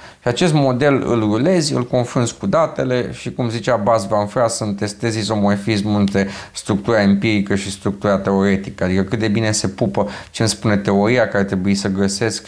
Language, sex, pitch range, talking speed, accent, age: Romanian, male, 95-120 Hz, 180 wpm, native, 30-49